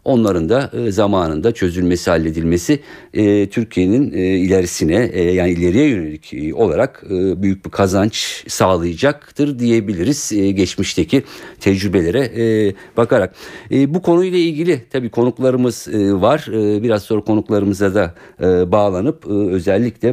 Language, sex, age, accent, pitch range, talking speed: Turkish, male, 50-69, native, 90-115 Hz, 90 wpm